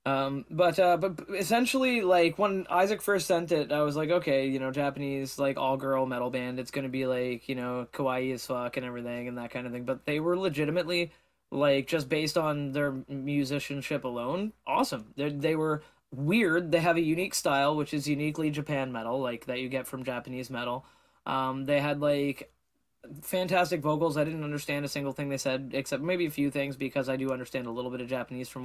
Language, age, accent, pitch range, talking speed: English, 20-39, American, 130-160 Hz, 205 wpm